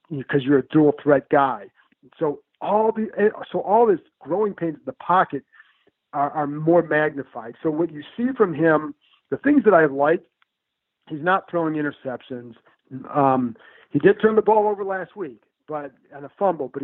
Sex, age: male, 50-69